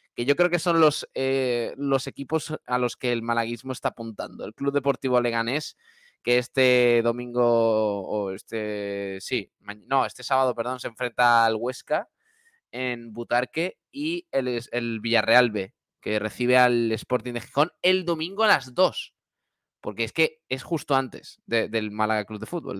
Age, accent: 20-39, Spanish